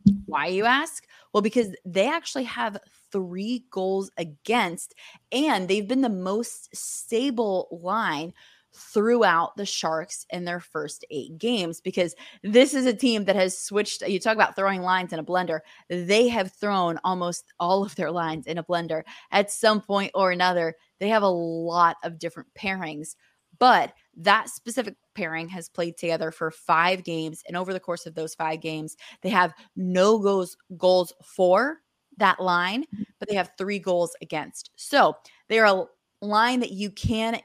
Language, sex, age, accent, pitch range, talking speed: English, female, 20-39, American, 170-210 Hz, 170 wpm